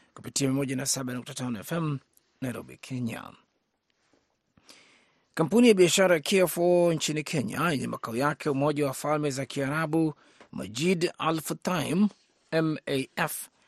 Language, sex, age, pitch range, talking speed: Swahili, male, 30-49, 145-175 Hz, 100 wpm